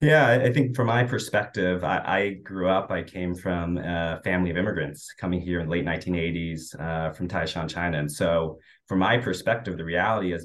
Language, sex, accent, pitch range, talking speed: English, male, American, 85-95 Hz, 200 wpm